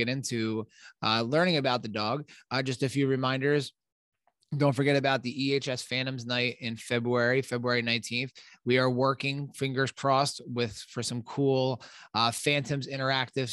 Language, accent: English, American